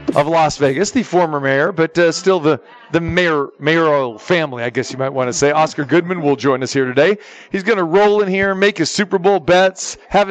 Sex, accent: male, American